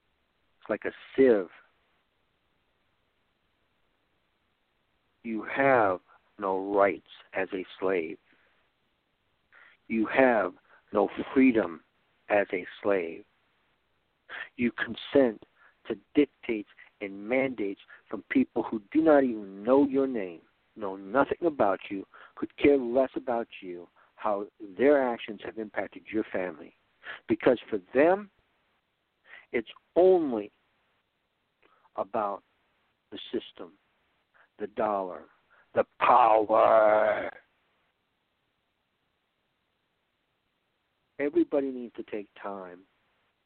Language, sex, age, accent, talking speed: English, male, 60-79, American, 90 wpm